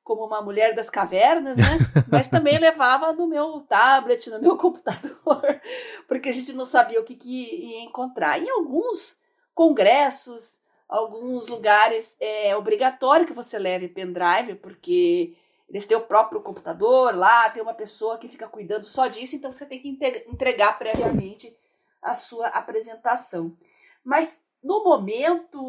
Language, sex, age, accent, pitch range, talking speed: Portuguese, female, 40-59, Brazilian, 225-320 Hz, 145 wpm